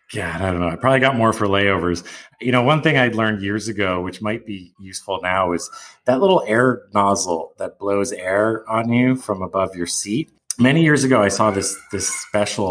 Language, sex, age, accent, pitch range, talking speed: English, male, 30-49, American, 90-115 Hz, 210 wpm